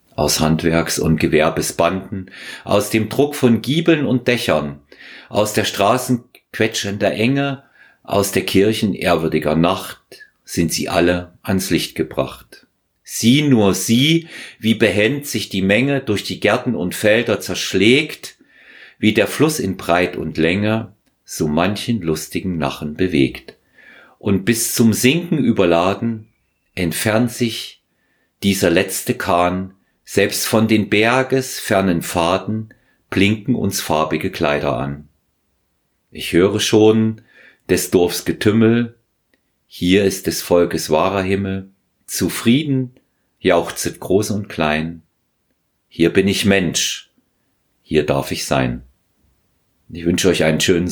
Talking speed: 125 wpm